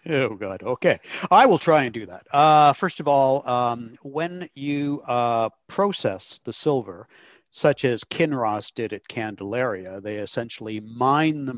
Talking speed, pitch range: 155 wpm, 115-145 Hz